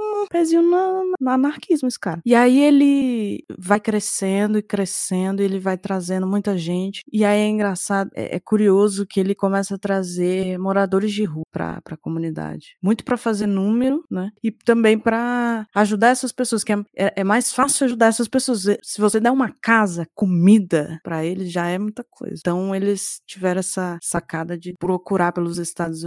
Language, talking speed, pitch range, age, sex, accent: Portuguese, 180 wpm, 180-230 Hz, 20-39, female, Brazilian